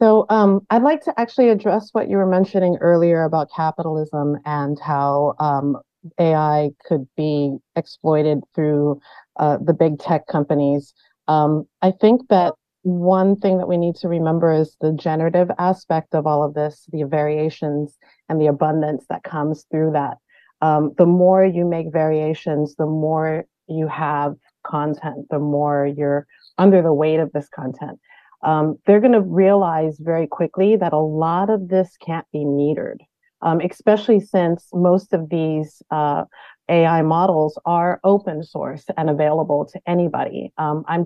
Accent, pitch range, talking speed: American, 150-175 Hz, 160 wpm